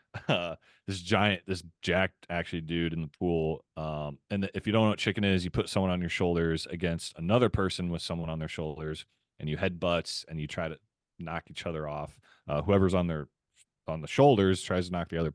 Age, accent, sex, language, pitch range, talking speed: 30-49, American, male, English, 80-100 Hz, 225 wpm